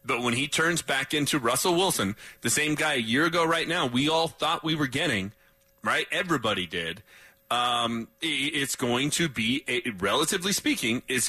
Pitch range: 125-170 Hz